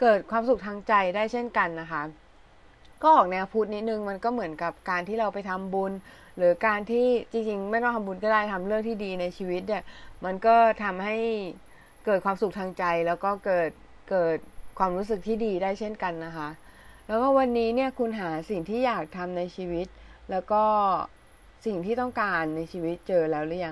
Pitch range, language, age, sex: 180-230 Hz, Thai, 20-39, female